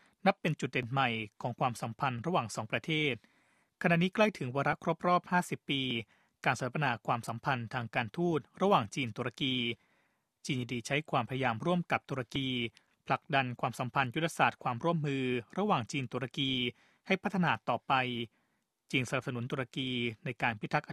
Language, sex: Thai, male